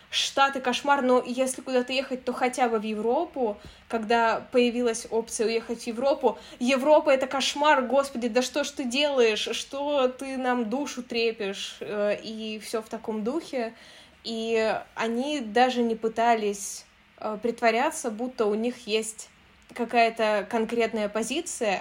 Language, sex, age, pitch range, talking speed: Russian, female, 20-39, 210-245 Hz, 135 wpm